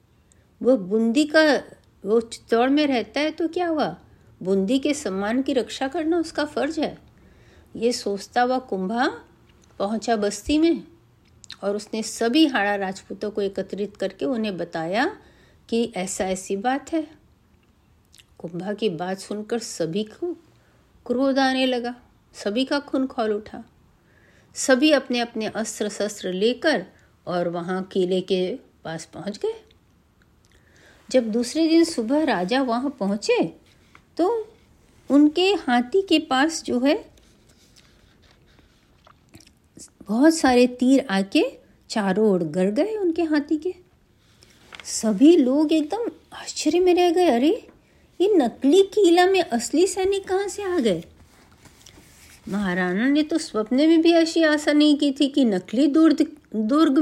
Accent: native